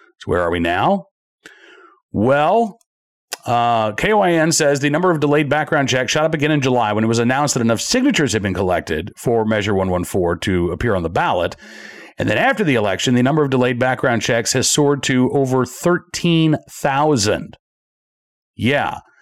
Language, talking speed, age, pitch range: English, 170 wpm, 40-59, 115-155 Hz